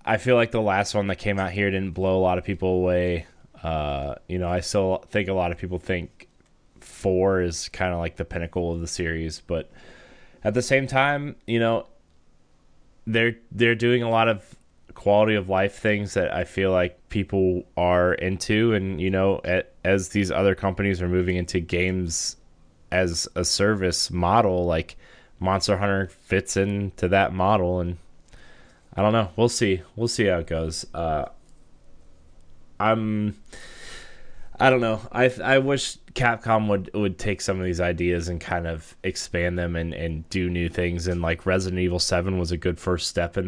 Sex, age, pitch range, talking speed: male, 20-39, 85-100 Hz, 180 wpm